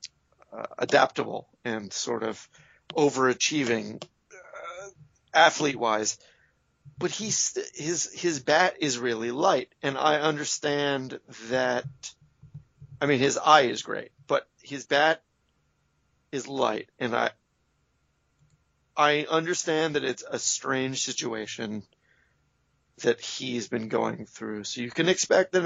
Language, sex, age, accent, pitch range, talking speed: English, male, 40-59, American, 110-155 Hz, 120 wpm